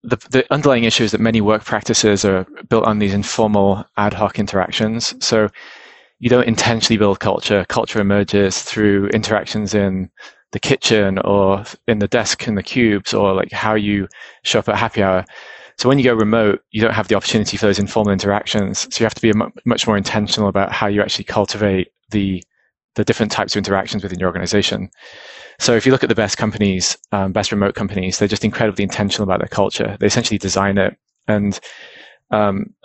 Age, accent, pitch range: 20-39, British, 100-110 Hz